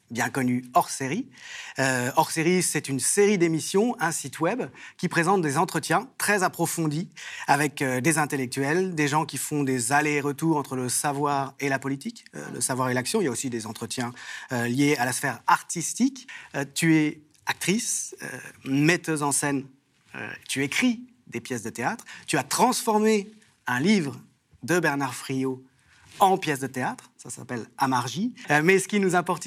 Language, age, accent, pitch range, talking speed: French, 30-49, French, 135-185 Hz, 185 wpm